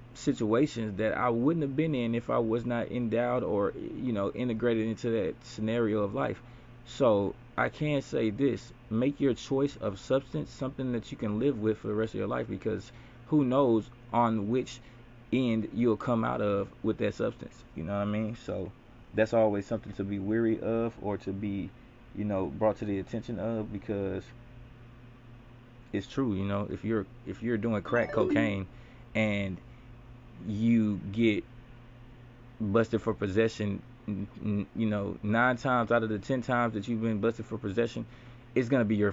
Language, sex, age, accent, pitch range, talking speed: English, male, 20-39, American, 105-120 Hz, 180 wpm